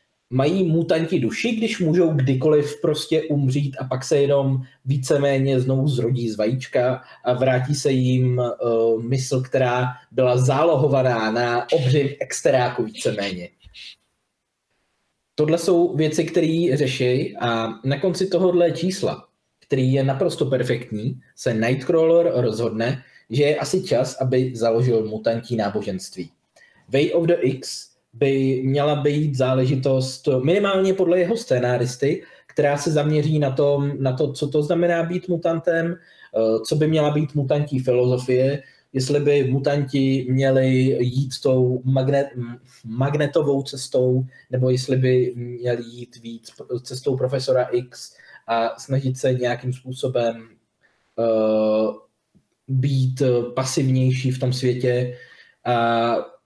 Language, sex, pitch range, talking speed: Czech, male, 125-150 Hz, 120 wpm